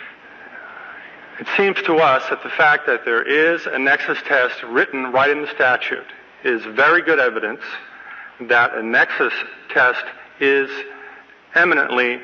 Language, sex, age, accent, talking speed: English, male, 50-69, American, 135 wpm